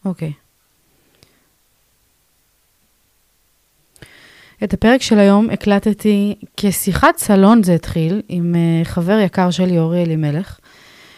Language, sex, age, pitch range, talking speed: Hebrew, female, 20-39, 170-210 Hz, 90 wpm